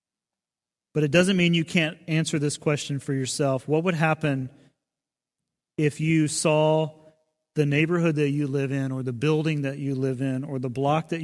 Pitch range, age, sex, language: 135-155 Hz, 30-49, male, English